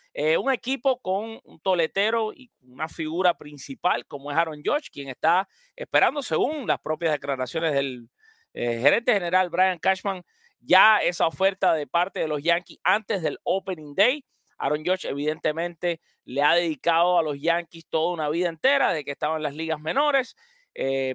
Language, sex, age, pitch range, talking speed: English, male, 30-49, 155-230 Hz, 170 wpm